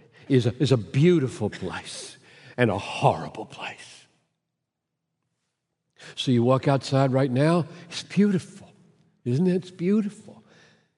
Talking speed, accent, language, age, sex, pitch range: 120 wpm, American, English, 60-79, male, 135-200 Hz